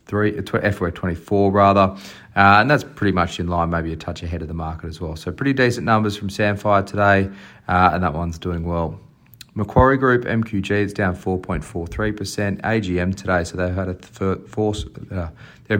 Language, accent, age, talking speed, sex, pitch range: English, Australian, 30-49, 175 wpm, male, 85-100 Hz